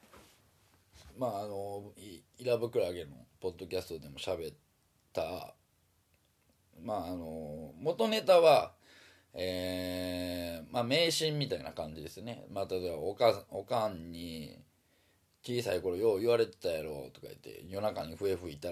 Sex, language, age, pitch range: male, Japanese, 20-39, 85-135 Hz